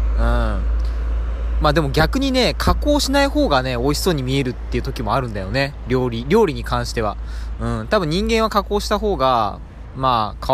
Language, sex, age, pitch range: Japanese, male, 20-39, 95-140 Hz